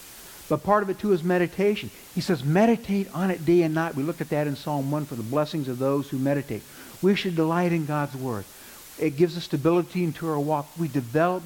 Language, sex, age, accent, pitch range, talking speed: English, male, 60-79, American, 130-175 Hz, 230 wpm